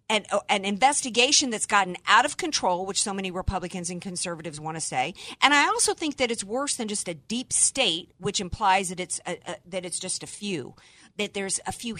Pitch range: 185-245 Hz